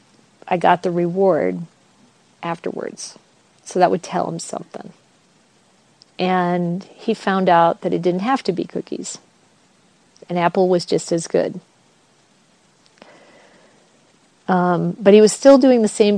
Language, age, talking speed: English, 40-59, 135 wpm